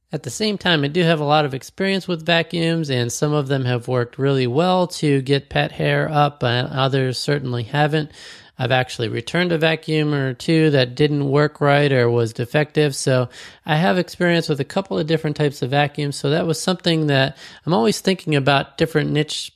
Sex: male